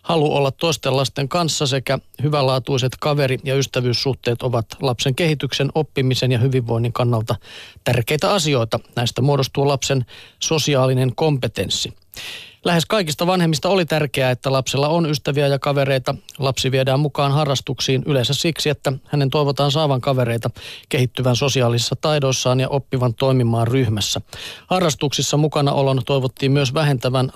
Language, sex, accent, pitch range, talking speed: Finnish, male, native, 125-150 Hz, 125 wpm